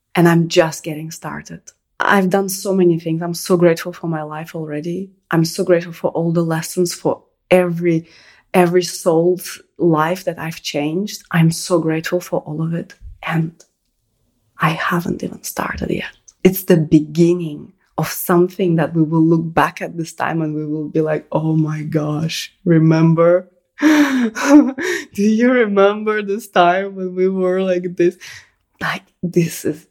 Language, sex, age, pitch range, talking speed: English, female, 20-39, 155-185 Hz, 160 wpm